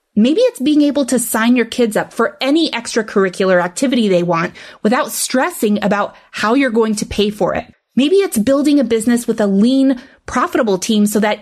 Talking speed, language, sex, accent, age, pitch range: 195 wpm, English, female, American, 20-39, 205-270 Hz